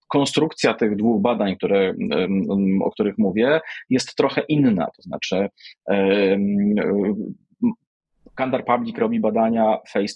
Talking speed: 100 wpm